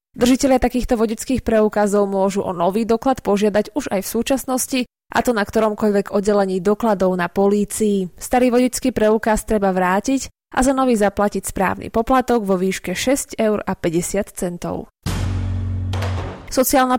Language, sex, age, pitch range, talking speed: Slovak, female, 20-39, 195-240 Hz, 130 wpm